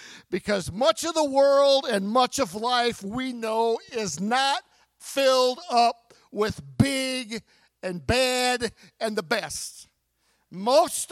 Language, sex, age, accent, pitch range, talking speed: English, male, 50-69, American, 175-255 Hz, 125 wpm